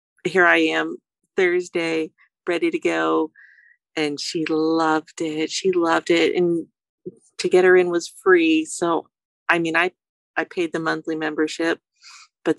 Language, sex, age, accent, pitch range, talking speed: English, female, 40-59, American, 155-200 Hz, 150 wpm